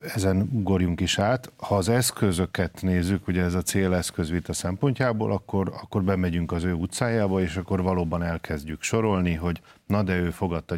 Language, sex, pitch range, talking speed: Hungarian, male, 85-95 Hz, 160 wpm